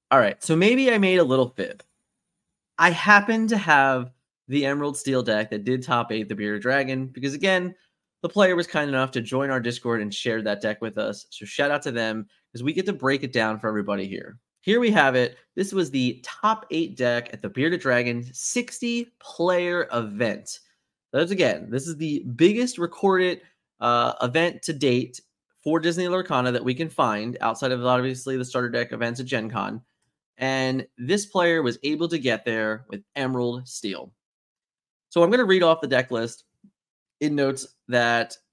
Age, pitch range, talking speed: 20-39, 120-170 Hz, 190 wpm